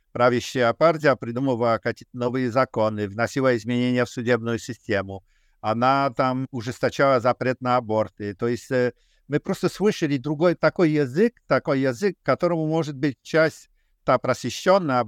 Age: 50-69